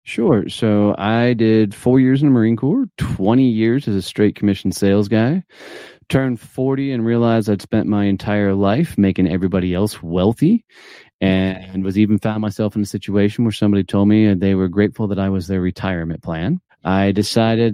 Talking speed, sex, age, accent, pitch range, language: 185 wpm, male, 30-49, American, 100-125 Hz, English